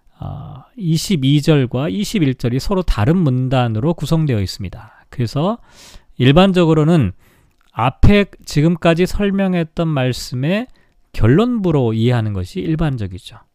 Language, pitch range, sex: Korean, 120-175 Hz, male